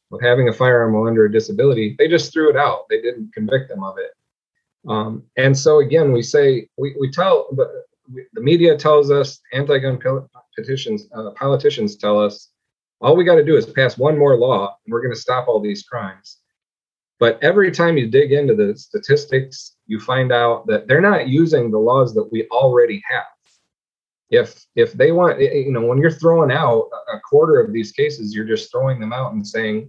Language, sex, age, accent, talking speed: English, male, 30-49, American, 200 wpm